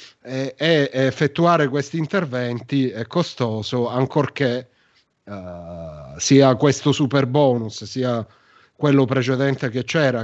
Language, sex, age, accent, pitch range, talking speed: Italian, male, 30-49, native, 120-140 Hz, 100 wpm